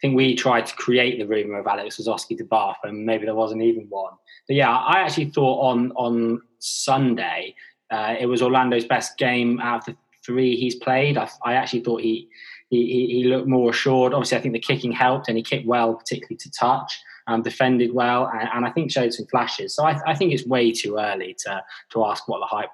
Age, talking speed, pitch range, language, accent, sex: 20-39, 230 wpm, 115-125 Hz, English, British, male